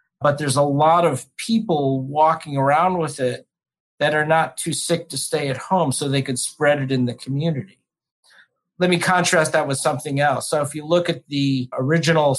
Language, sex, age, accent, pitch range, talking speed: English, male, 50-69, American, 130-155 Hz, 200 wpm